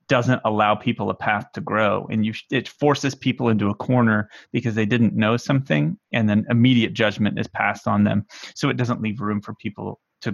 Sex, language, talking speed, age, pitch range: male, English, 210 wpm, 30-49, 110-125 Hz